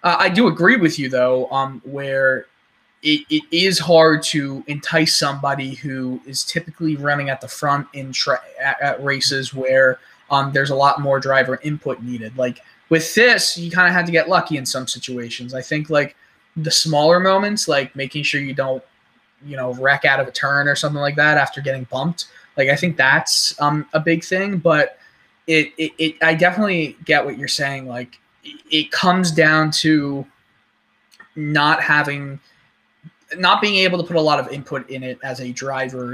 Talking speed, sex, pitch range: 185 wpm, male, 130-160 Hz